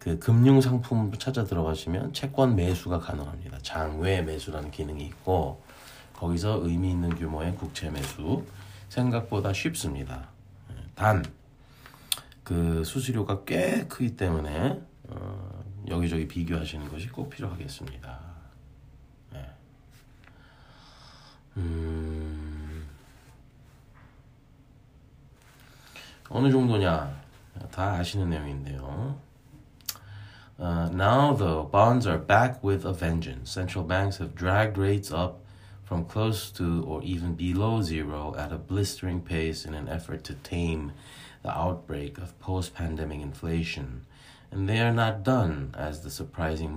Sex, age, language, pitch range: male, 40-59, Korean, 80-105 Hz